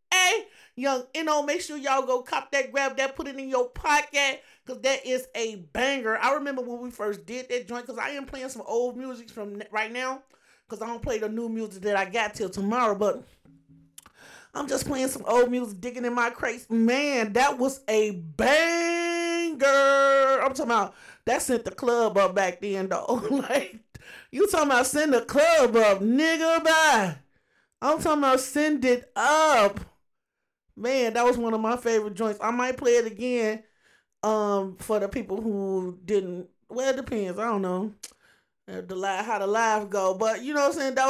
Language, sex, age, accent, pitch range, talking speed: English, male, 30-49, American, 215-275 Hz, 190 wpm